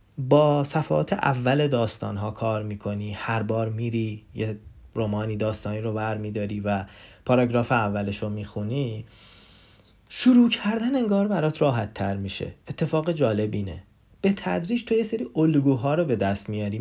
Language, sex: Persian, male